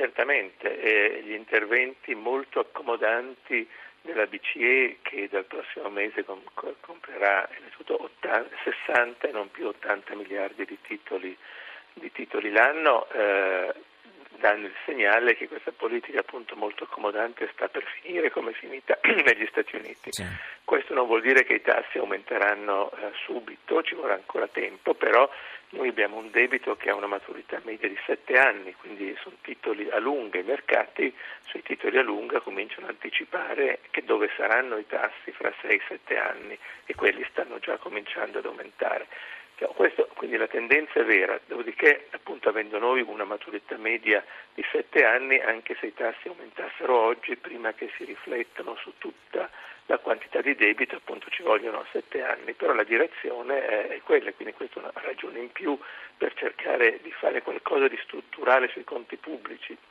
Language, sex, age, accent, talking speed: Italian, male, 50-69, native, 165 wpm